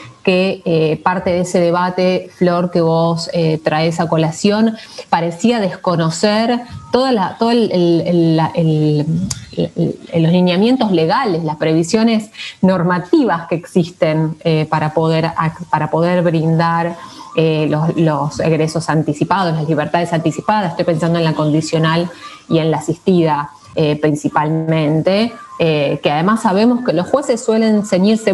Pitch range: 160-195 Hz